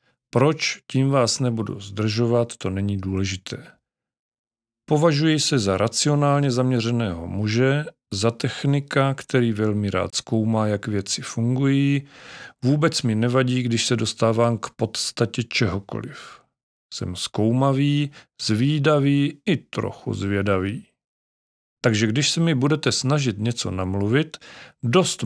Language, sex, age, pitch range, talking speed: Czech, male, 40-59, 105-135 Hz, 110 wpm